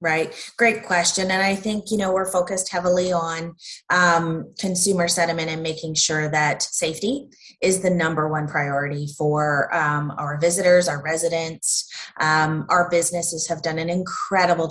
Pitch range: 160-195 Hz